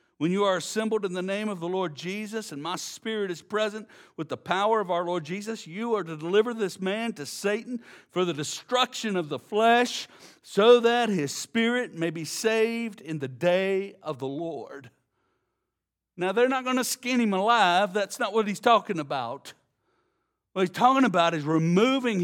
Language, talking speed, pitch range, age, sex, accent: English, 190 wpm, 155-230 Hz, 60-79, male, American